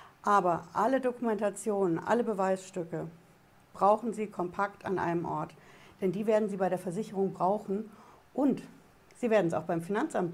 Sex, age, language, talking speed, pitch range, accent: female, 60-79, German, 150 wpm, 175-215 Hz, German